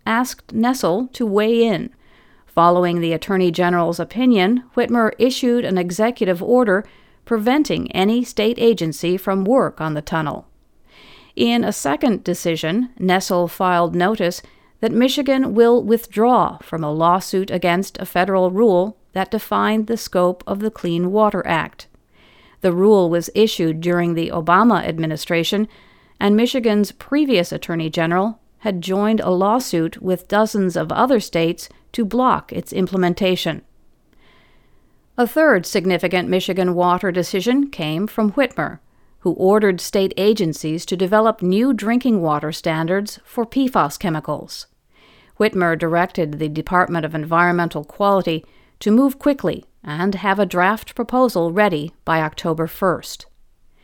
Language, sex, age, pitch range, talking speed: English, female, 50-69, 170-225 Hz, 130 wpm